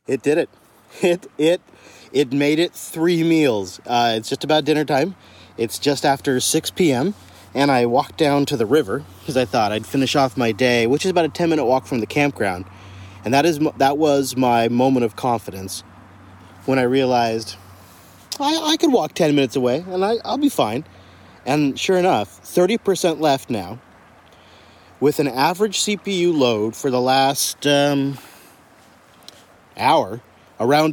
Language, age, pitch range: English, 30-49, 115-155 Hz